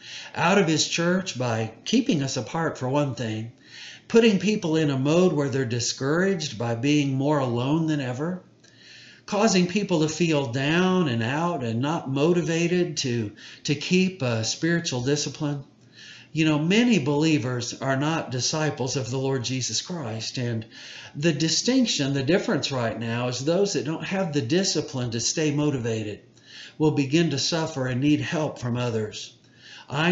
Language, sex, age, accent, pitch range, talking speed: English, male, 50-69, American, 125-165 Hz, 160 wpm